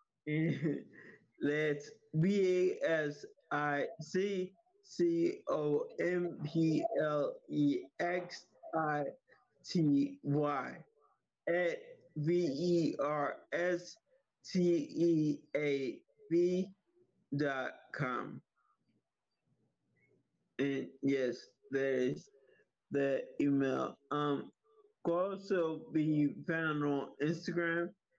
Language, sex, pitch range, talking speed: English, male, 145-180 Hz, 85 wpm